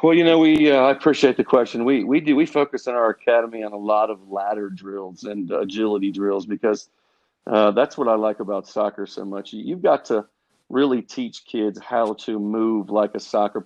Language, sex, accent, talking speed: English, male, American, 220 wpm